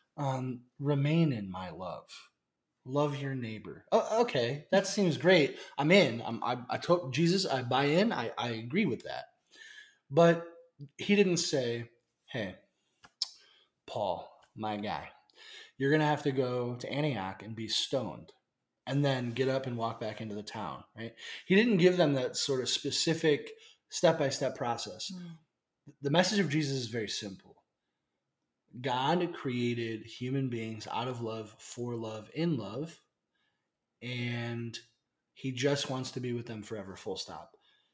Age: 20-39